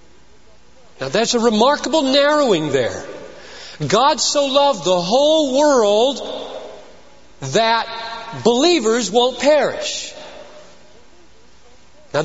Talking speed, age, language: 85 wpm, 40-59, English